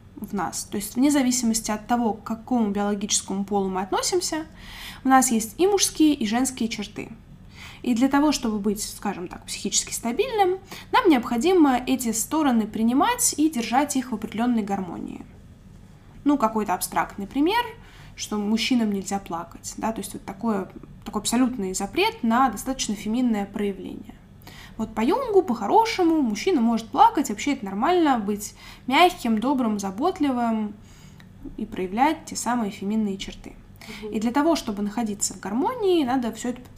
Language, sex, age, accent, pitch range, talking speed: Russian, female, 10-29, native, 215-285 Hz, 150 wpm